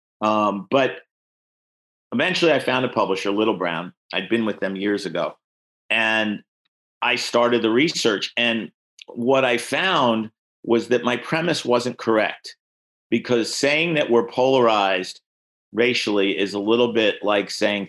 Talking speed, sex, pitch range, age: 140 wpm, male, 95-125 Hz, 50-69